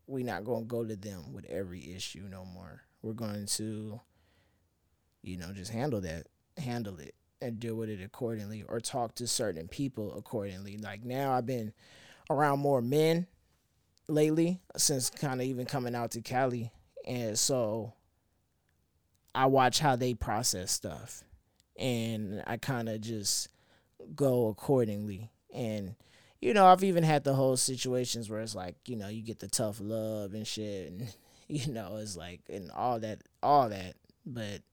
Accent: American